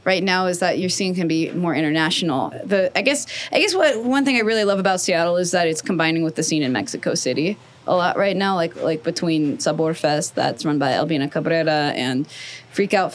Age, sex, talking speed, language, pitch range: 20-39, female, 225 wpm, English, 160-205 Hz